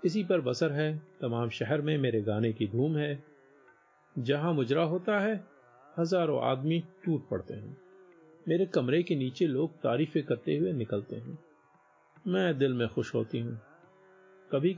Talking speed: 155 wpm